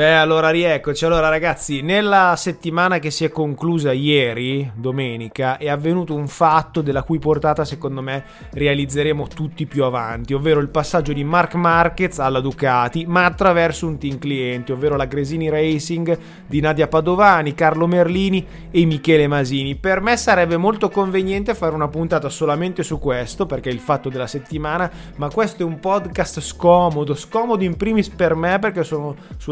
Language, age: Italian, 20-39